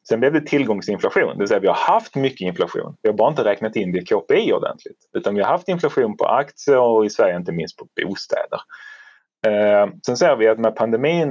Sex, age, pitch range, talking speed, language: male, 30-49, 95-155 Hz, 220 wpm, Swedish